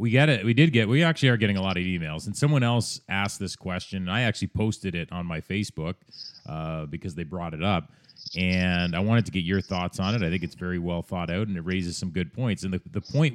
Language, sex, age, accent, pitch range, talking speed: English, male, 30-49, American, 95-120 Hz, 270 wpm